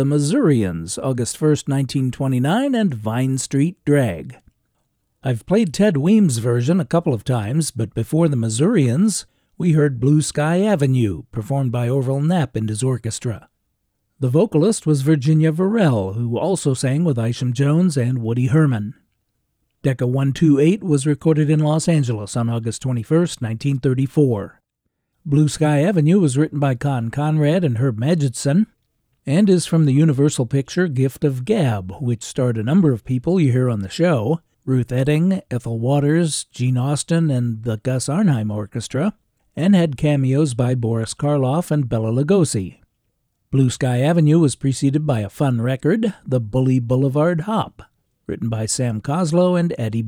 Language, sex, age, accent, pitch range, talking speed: English, male, 50-69, American, 120-155 Hz, 155 wpm